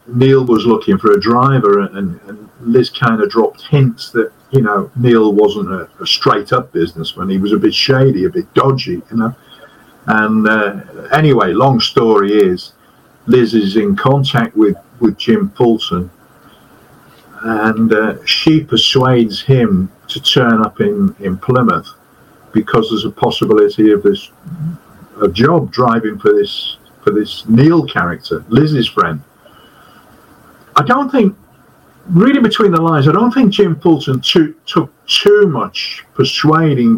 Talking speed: 150 wpm